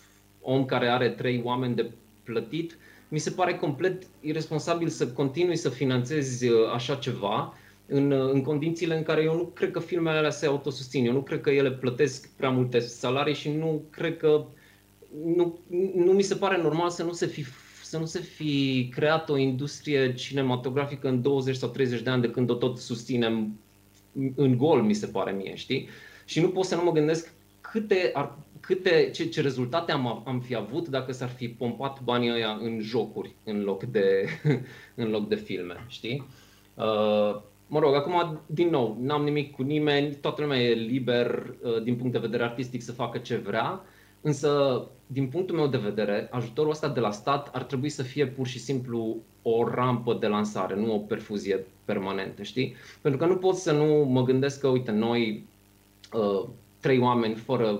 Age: 20-39